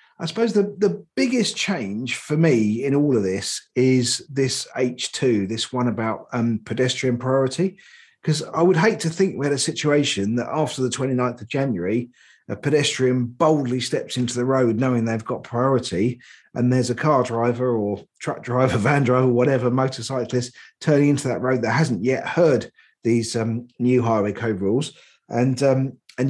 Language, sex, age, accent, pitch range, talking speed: English, male, 40-59, British, 120-145 Hz, 175 wpm